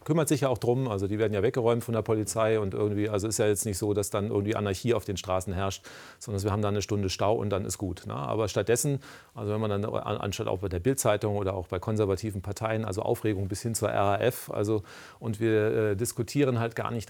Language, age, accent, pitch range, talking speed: German, 40-59, German, 105-120 Hz, 250 wpm